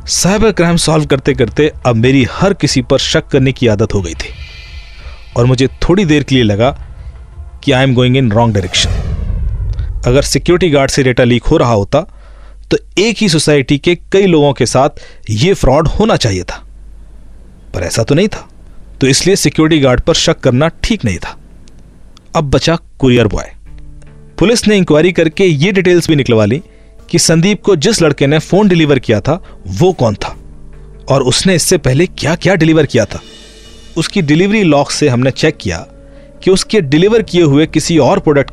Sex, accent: male, native